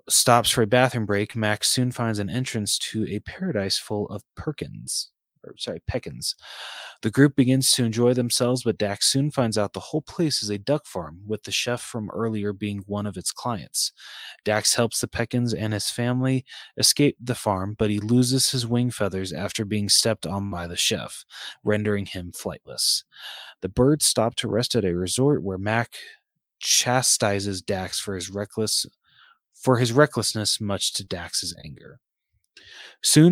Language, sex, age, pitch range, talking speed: English, male, 20-39, 105-125 Hz, 175 wpm